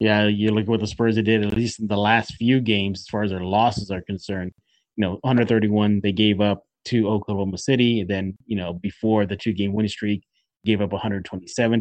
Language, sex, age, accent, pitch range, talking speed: English, male, 30-49, American, 105-130 Hz, 215 wpm